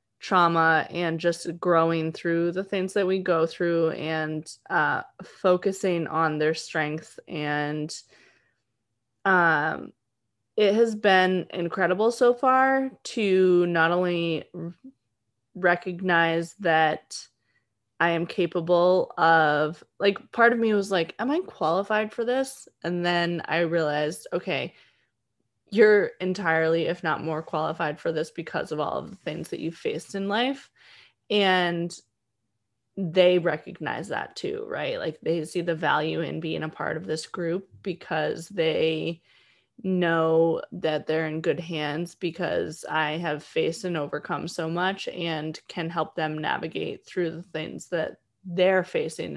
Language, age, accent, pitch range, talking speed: English, 20-39, American, 160-185 Hz, 140 wpm